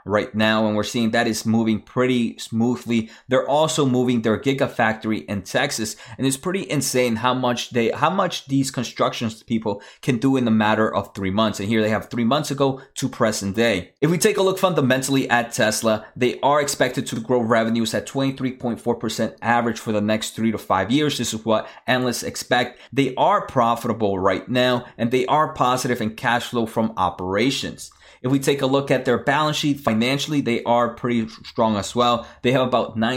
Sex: male